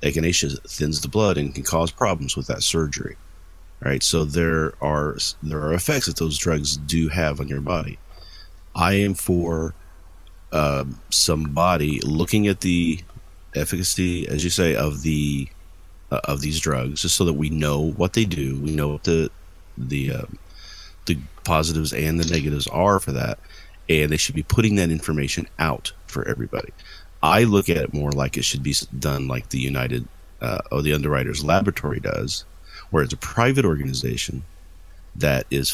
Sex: male